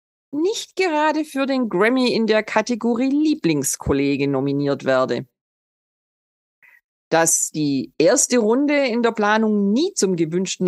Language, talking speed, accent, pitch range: German, 120 wpm, German, 175-275 Hz